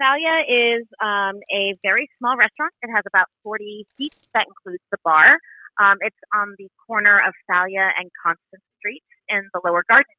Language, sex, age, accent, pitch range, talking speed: English, female, 30-49, American, 185-245 Hz, 175 wpm